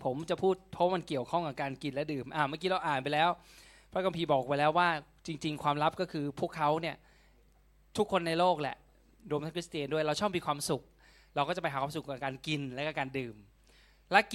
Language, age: Thai, 20-39